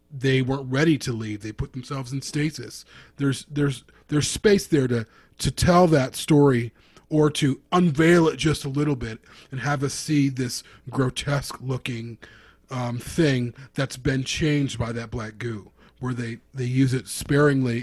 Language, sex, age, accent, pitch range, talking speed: English, male, 30-49, American, 120-145 Hz, 170 wpm